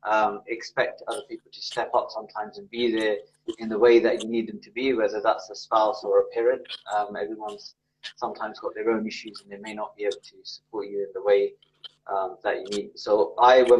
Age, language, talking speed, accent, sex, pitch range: 20-39, English, 230 wpm, British, male, 110-165 Hz